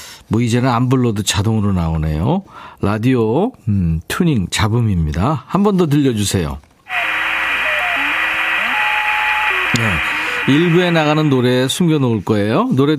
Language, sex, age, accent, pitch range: Korean, male, 50-69, native, 105-155 Hz